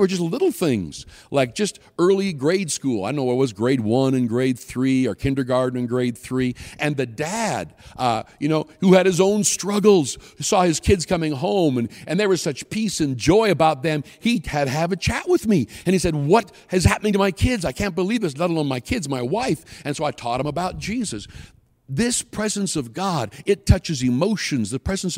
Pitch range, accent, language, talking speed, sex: 125-180 Hz, American, English, 225 wpm, male